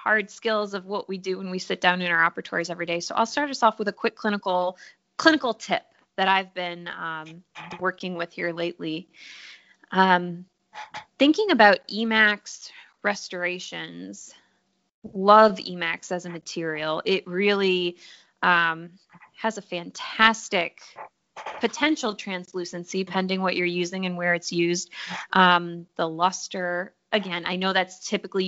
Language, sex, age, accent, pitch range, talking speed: English, female, 20-39, American, 175-205 Hz, 145 wpm